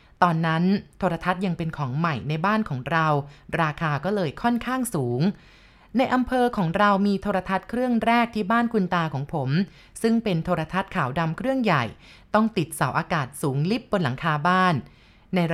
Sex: female